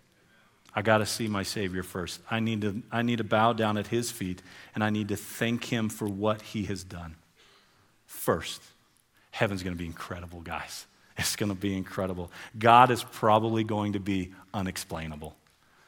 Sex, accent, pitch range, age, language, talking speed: male, American, 95-125 Hz, 40-59, English, 180 wpm